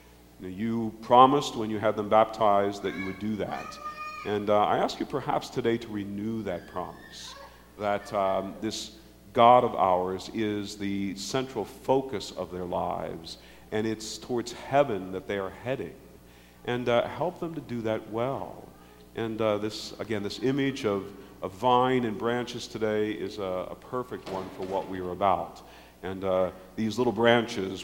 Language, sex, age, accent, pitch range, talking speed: English, male, 50-69, American, 90-115 Hz, 170 wpm